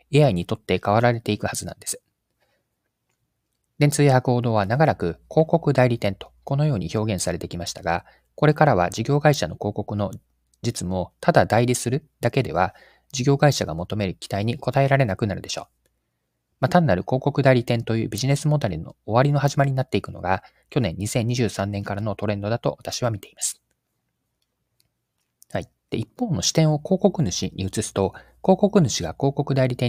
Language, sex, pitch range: Japanese, male, 95-140 Hz